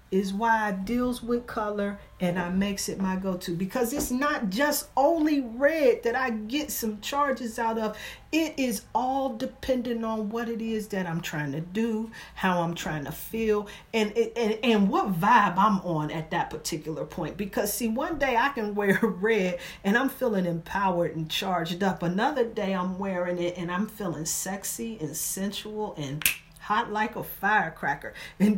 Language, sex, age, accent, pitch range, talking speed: English, female, 40-59, American, 180-235 Hz, 180 wpm